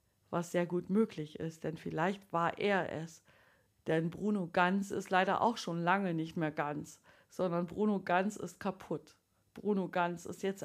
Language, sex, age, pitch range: German, female, 50-69, 165-200 Hz